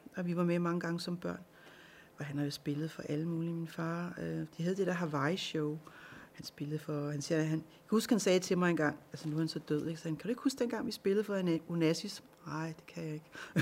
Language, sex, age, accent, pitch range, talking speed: Danish, female, 40-59, native, 155-185 Hz, 265 wpm